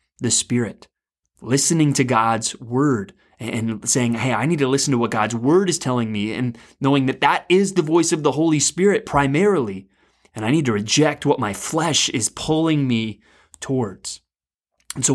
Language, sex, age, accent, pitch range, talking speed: English, male, 20-39, American, 120-155 Hz, 180 wpm